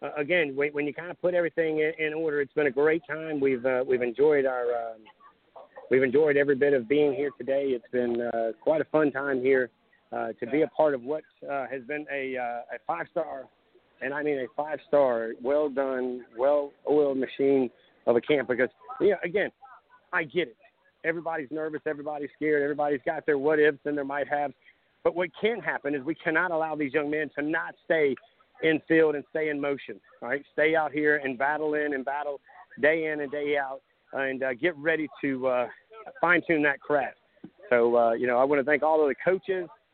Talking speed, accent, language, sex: 215 wpm, American, English, male